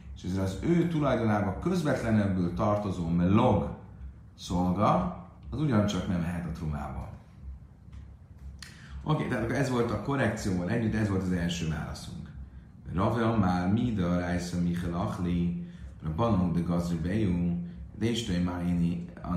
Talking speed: 135 wpm